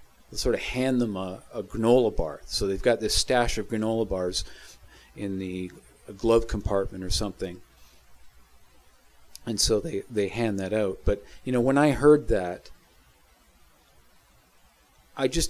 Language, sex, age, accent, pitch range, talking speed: English, male, 40-59, American, 100-120 Hz, 145 wpm